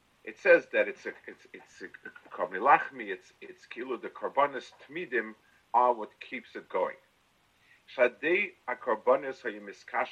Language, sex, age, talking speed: English, male, 50-69, 155 wpm